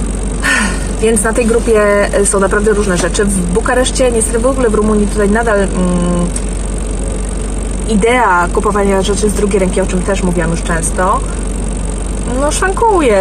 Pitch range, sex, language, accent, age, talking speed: 190-225 Hz, female, Polish, native, 20-39, 145 wpm